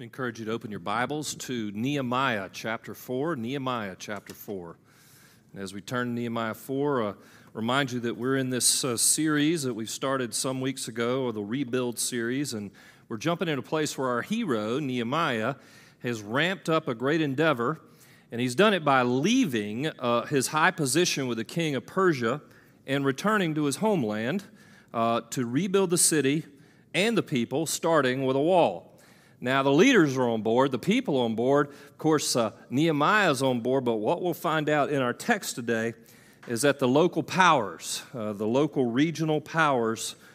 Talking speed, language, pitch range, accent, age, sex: 185 wpm, English, 115-150 Hz, American, 40-59, male